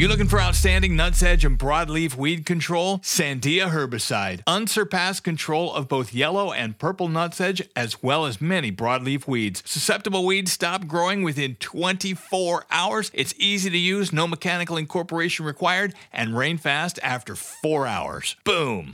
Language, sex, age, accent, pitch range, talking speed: English, male, 40-59, American, 135-190 Hz, 155 wpm